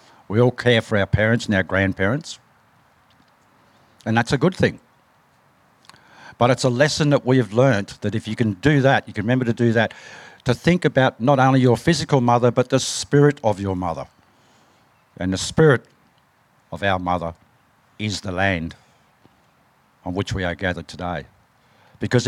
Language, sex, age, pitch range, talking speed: English, male, 60-79, 95-130 Hz, 170 wpm